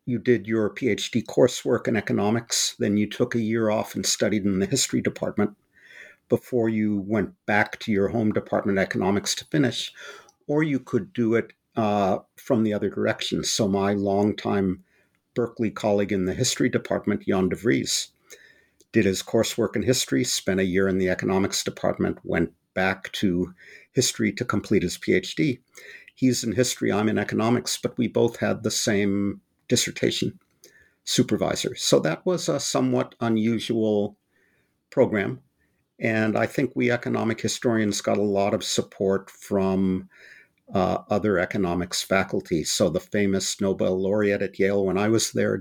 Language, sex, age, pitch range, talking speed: English, male, 50-69, 95-115 Hz, 160 wpm